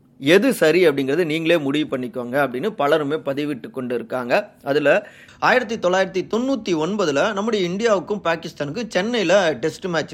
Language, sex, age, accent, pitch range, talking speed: Tamil, male, 30-49, native, 130-180 Hz, 130 wpm